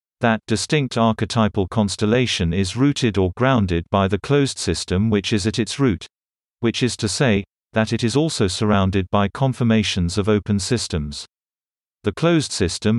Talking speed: 155 wpm